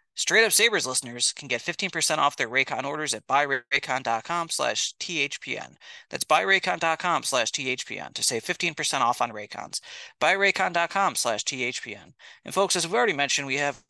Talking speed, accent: 155 wpm, American